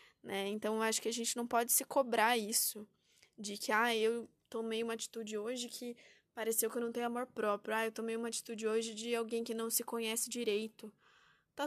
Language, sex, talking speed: Portuguese, female, 210 wpm